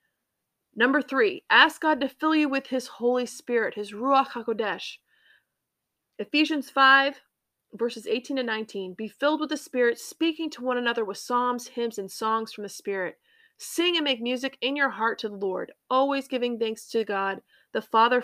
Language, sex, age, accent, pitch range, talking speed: English, female, 30-49, American, 225-290 Hz, 180 wpm